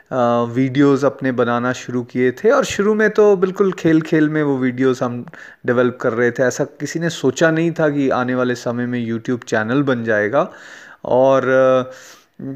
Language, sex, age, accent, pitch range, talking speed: Hindi, male, 30-49, native, 125-165 Hz, 185 wpm